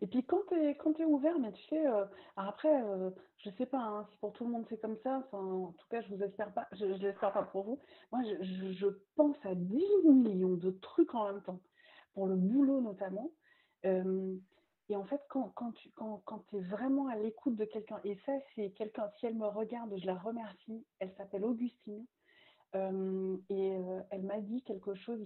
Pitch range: 195-245 Hz